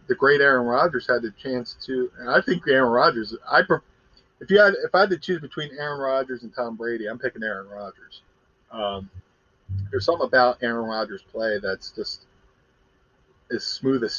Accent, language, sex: American, English, male